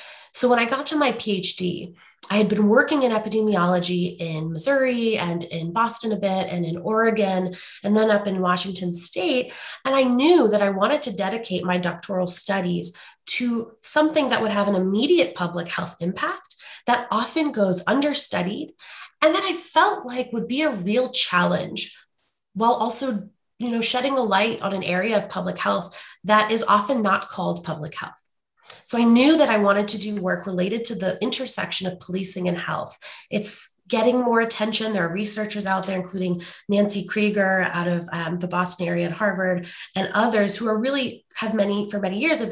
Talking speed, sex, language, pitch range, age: 185 wpm, female, English, 180-230 Hz, 20-39